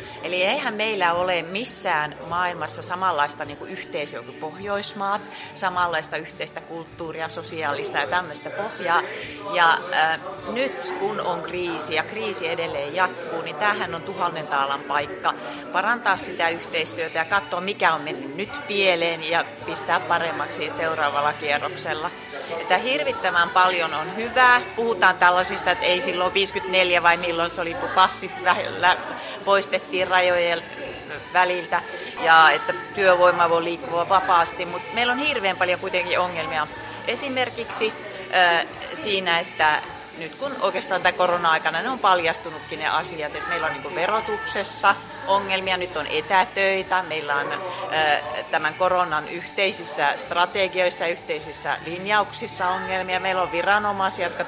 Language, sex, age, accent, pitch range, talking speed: Finnish, female, 30-49, native, 165-190 Hz, 130 wpm